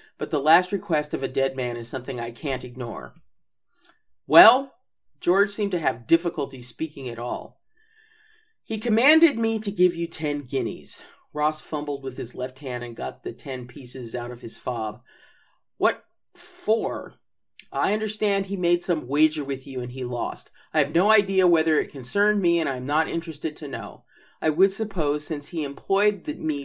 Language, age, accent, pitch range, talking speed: English, 40-59, American, 135-195 Hz, 180 wpm